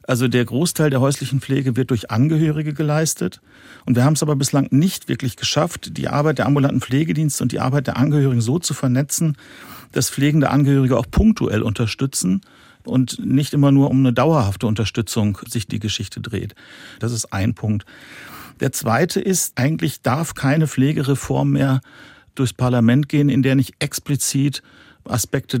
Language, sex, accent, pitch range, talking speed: German, male, German, 115-140 Hz, 165 wpm